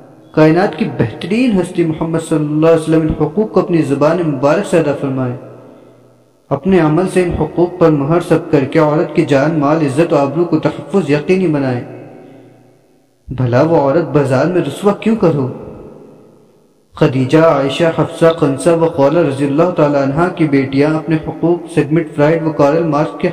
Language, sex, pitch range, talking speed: Urdu, male, 140-170 Hz, 170 wpm